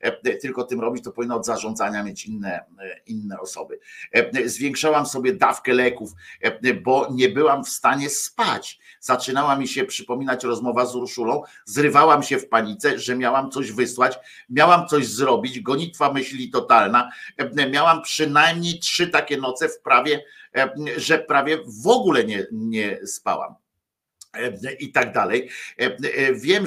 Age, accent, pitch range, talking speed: 50-69, native, 125-165 Hz, 130 wpm